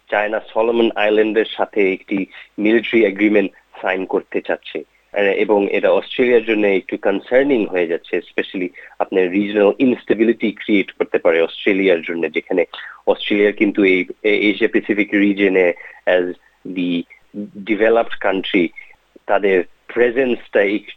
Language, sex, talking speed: Bengali, male, 35 wpm